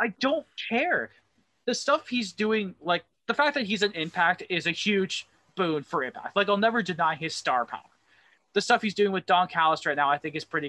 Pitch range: 145-205 Hz